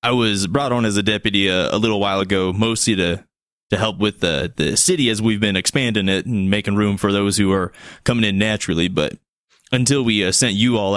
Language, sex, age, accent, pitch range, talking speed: English, male, 20-39, American, 100-120 Hz, 230 wpm